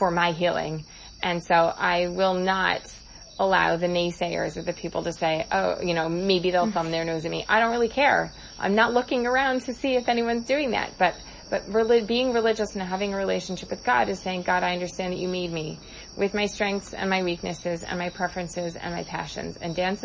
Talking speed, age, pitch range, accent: 220 wpm, 20-39, 170-200 Hz, American